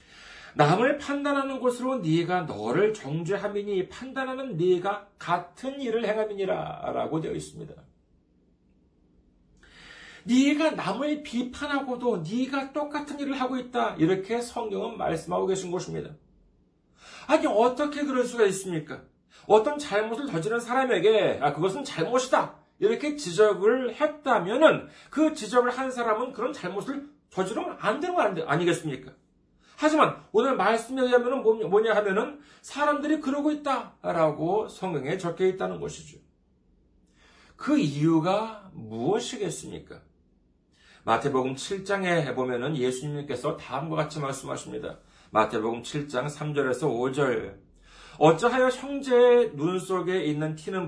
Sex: male